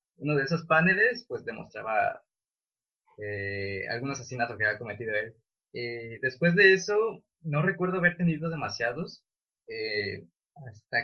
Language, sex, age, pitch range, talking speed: Spanish, male, 20-39, 125-165 Hz, 130 wpm